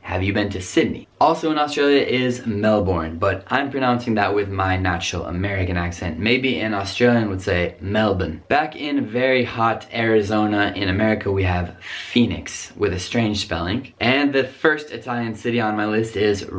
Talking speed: 175 wpm